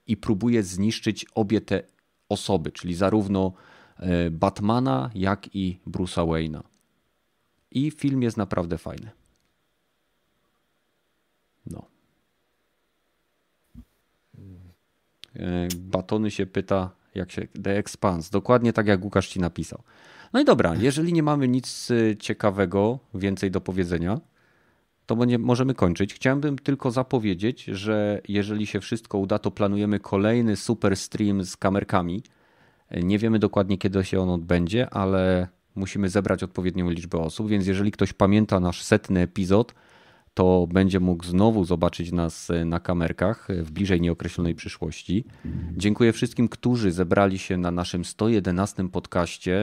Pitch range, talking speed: 90-110 Hz, 125 wpm